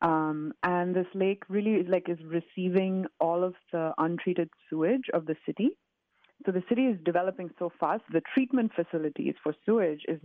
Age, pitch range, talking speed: 30-49, 155-185 Hz, 175 wpm